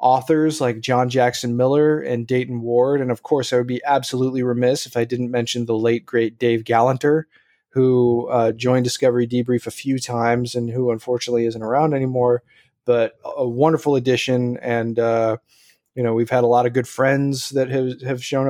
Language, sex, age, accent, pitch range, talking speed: English, male, 20-39, American, 120-140 Hz, 190 wpm